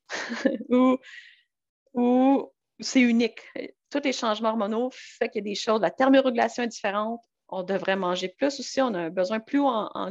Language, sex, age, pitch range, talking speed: French, female, 30-49, 195-245 Hz, 170 wpm